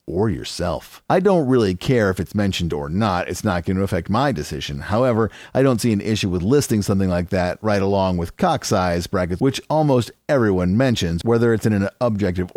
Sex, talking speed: male, 205 wpm